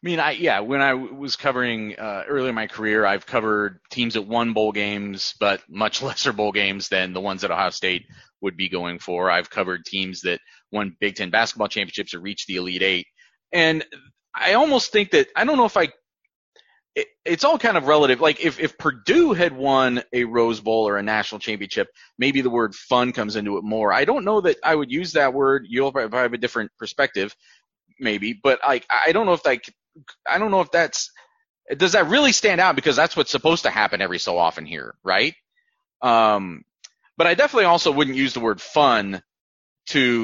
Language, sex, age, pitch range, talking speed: English, male, 30-49, 105-170 Hz, 215 wpm